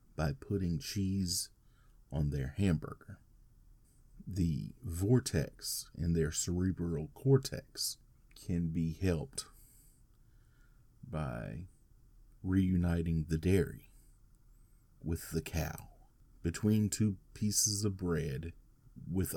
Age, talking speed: 30-49, 85 wpm